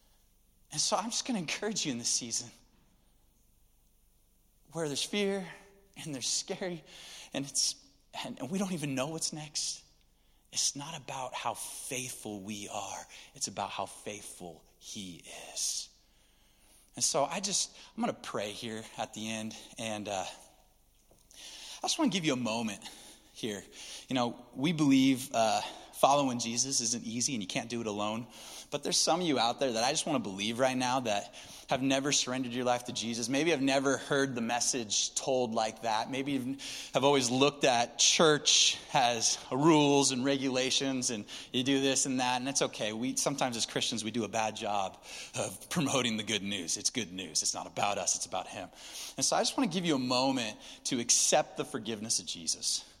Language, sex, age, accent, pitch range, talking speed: English, male, 30-49, American, 115-145 Hz, 190 wpm